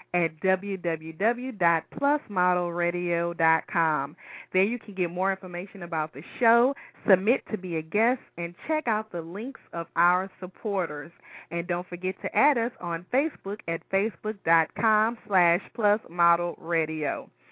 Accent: American